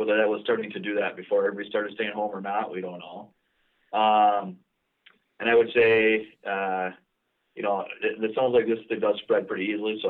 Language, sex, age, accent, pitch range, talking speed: English, male, 30-49, American, 95-120 Hz, 215 wpm